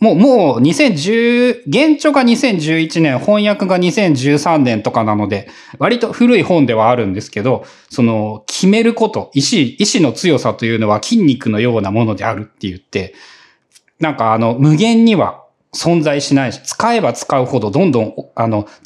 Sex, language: male, Japanese